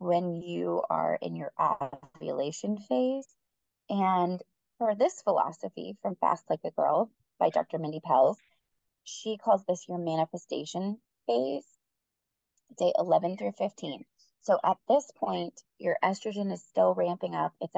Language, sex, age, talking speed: English, female, 20-39, 140 wpm